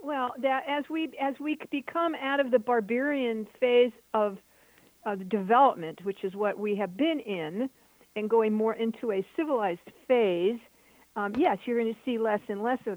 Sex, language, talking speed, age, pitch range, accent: female, English, 180 wpm, 60-79, 205-255 Hz, American